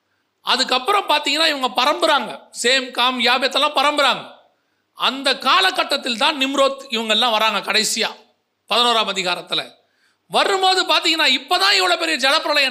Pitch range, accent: 245-310 Hz, native